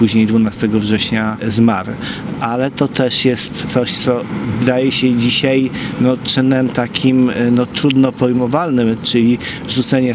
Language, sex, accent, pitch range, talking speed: Polish, male, native, 110-130 Hz, 125 wpm